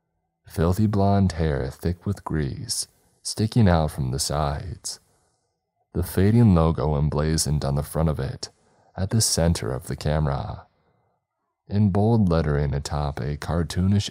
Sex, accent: male, American